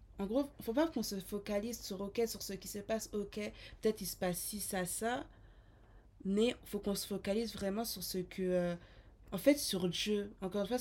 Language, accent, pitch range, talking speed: French, French, 180-225 Hz, 235 wpm